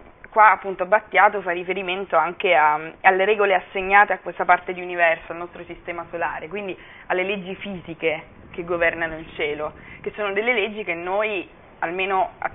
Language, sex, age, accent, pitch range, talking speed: Italian, female, 20-39, native, 170-210 Hz, 160 wpm